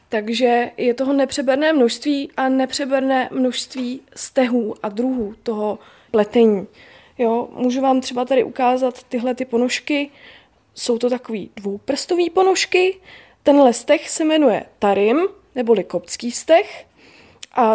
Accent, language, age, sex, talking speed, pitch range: native, Czech, 20-39, female, 120 wpm, 245-295 Hz